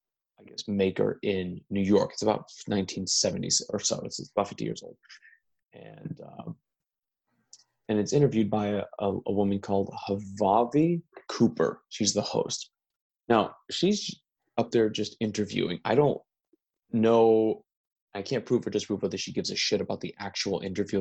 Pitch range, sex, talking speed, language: 100-120 Hz, male, 155 wpm, English